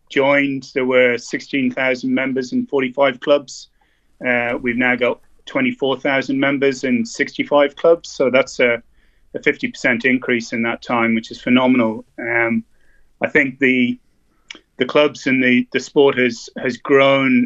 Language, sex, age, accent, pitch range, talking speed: English, male, 30-49, British, 120-135 Hz, 150 wpm